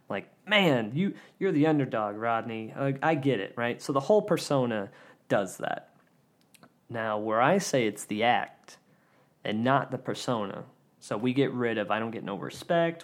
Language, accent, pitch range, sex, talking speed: English, American, 110-145 Hz, male, 185 wpm